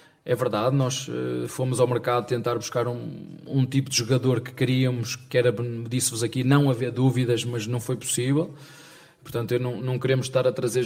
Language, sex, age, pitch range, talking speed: Portuguese, male, 20-39, 115-130 Hz, 180 wpm